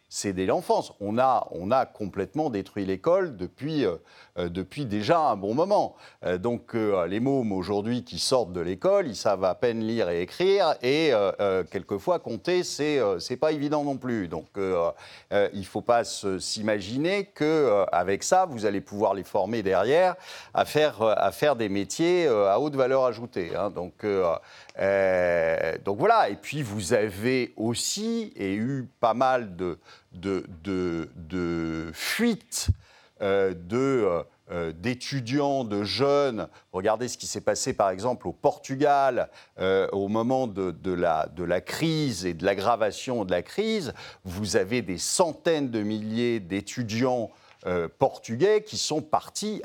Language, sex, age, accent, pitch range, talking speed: French, male, 50-69, French, 95-140 Hz, 165 wpm